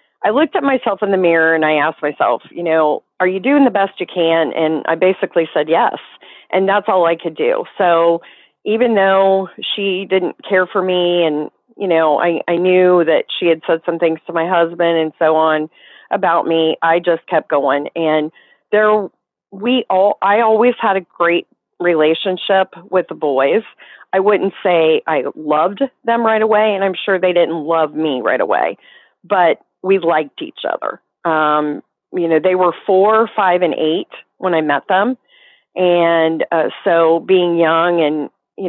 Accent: American